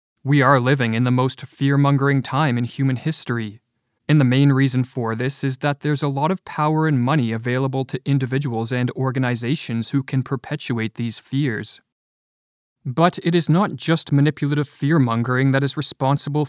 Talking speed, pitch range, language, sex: 175 wpm, 125-145 Hz, English, male